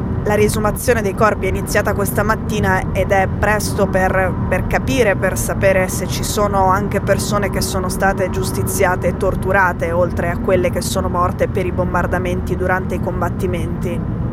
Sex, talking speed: female, 165 wpm